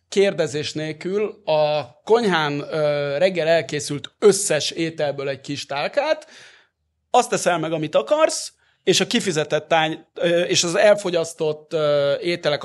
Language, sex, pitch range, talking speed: Hungarian, male, 135-175 Hz, 115 wpm